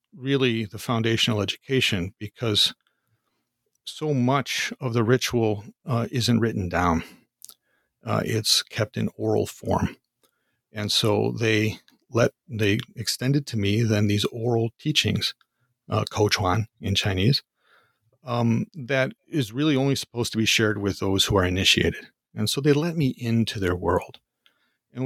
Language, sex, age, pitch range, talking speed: English, male, 40-59, 105-125 Hz, 140 wpm